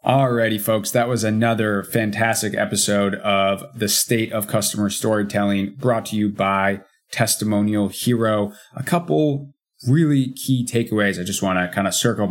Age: 20-39